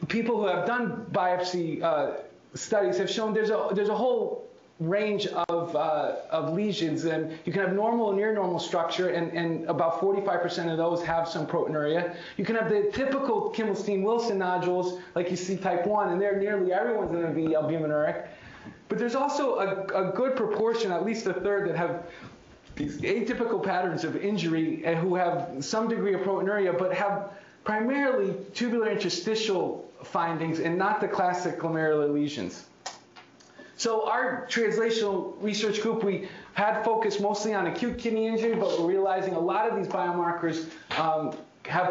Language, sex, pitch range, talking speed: English, male, 170-210 Hz, 165 wpm